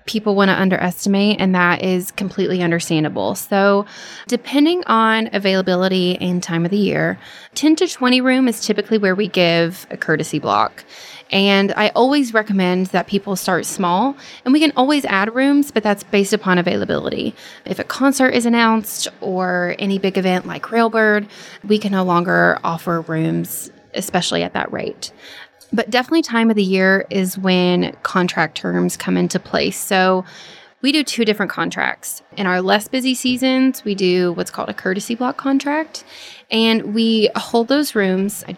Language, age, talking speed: English, 20-39, 170 wpm